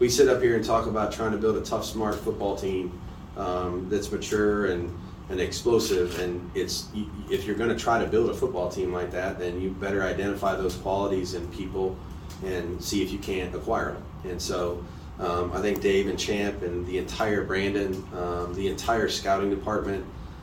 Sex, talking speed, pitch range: male, 195 wpm, 90-100 Hz